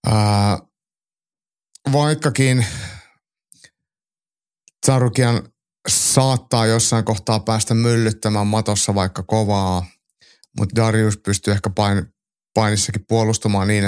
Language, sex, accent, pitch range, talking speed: Finnish, male, native, 100-120 Hz, 80 wpm